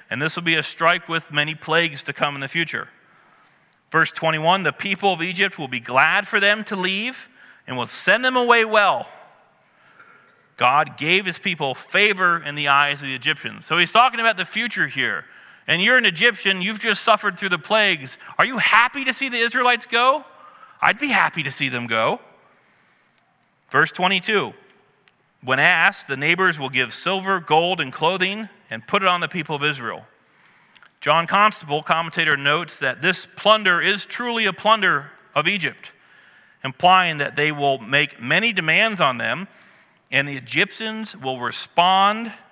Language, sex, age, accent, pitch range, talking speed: English, male, 40-59, American, 145-210 Hz, 175 wpm